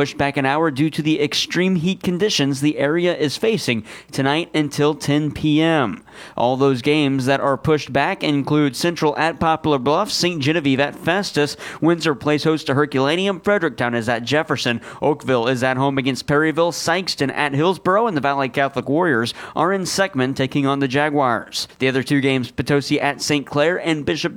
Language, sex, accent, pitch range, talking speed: English, male, American, 140-190 Hz, 180 wpm